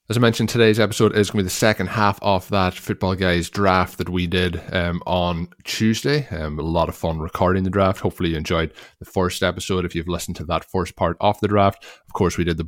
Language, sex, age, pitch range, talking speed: English, male, 20-39, 85-100 Hz, 245 wpm